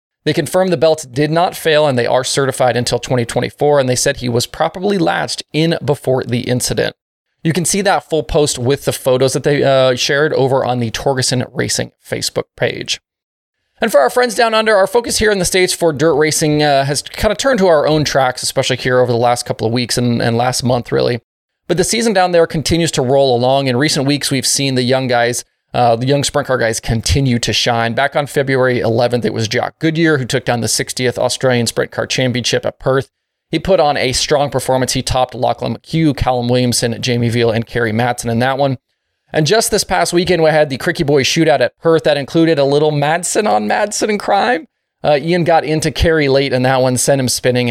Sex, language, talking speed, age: male, English, 225 wpm, 20-39